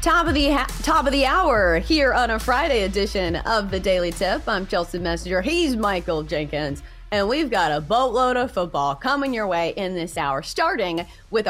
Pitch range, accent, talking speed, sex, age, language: 170-255 Hz, American, 200 wpm, female, 30-49, English